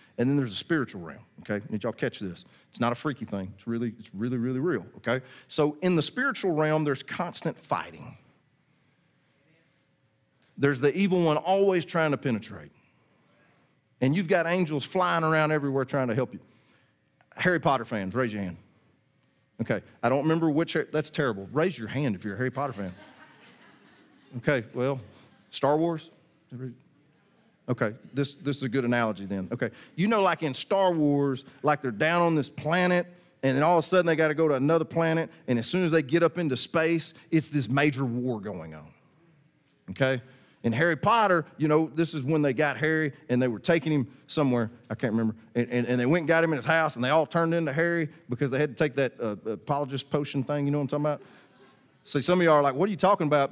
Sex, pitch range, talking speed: male, 125-160 Hz, 215 wpm